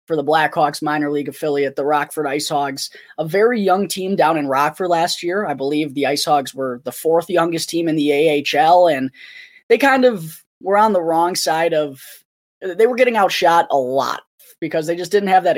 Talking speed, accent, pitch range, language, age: 200 wpm, American, 150-185 Hz, English, 20-39